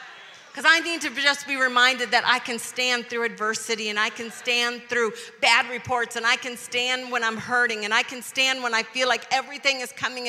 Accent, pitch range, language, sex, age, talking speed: American, 225-270 Hz, English, female, 40-59, 220 wpm